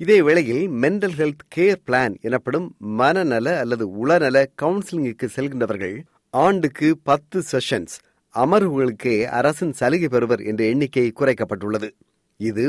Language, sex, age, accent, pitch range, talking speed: Tamil, male, 30-49, native, 115-155 Hz, 105 wpm